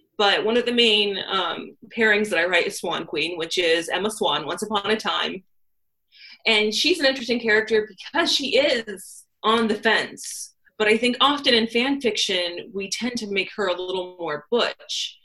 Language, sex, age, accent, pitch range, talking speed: English, female, 30-49, American, 200-275 Hz, 190 wpm